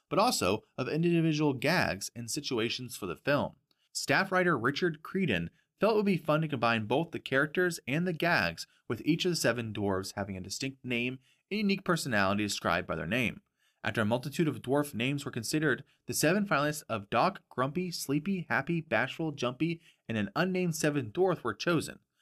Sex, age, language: male, 30-49, English